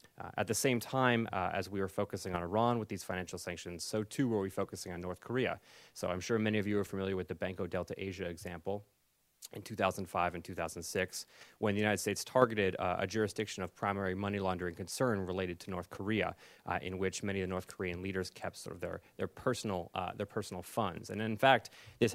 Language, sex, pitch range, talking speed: English, male, 95-110 Hz, 220 wpm